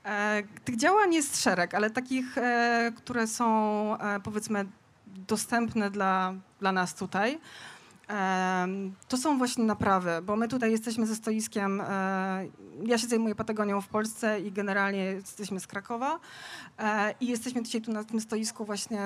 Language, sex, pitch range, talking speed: Polish, female, 205-240 Hz, 135 wpm